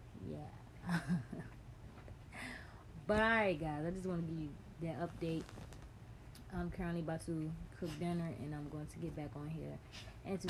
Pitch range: 150-175 Hz